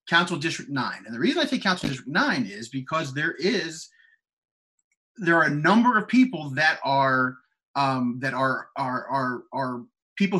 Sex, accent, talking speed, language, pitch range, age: male, American, 175 wpm, English, 140-195 Hz, 30-49